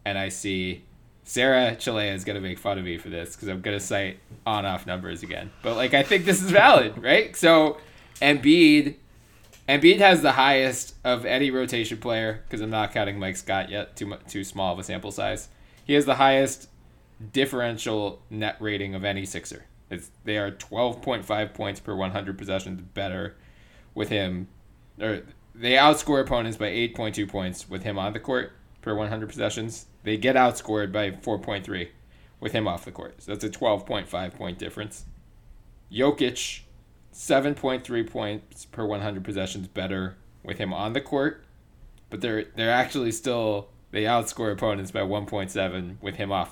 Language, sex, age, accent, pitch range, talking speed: English, male, 20-39, American, 95-115 Hz, 170 wpm